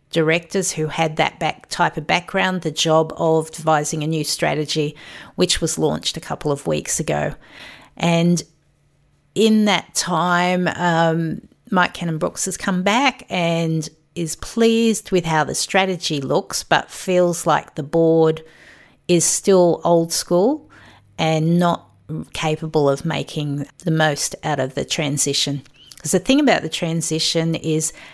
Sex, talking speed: female, 145 wpm